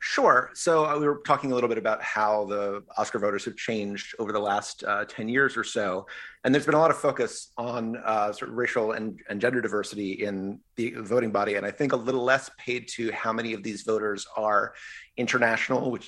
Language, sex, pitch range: English, male, 110-140 Hz